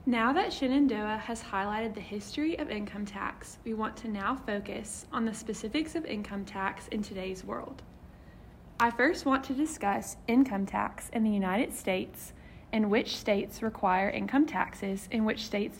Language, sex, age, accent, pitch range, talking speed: English, female, 20-39, American, 205-255 Hz, 165 wpm